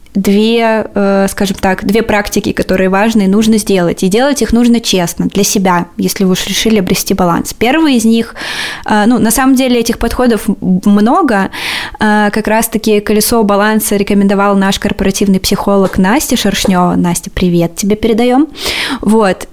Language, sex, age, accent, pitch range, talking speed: Russian, female, 20-39, native, 200-240 Hz, 145 wpm